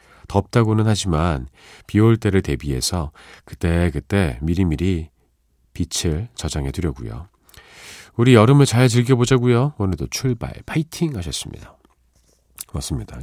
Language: Korean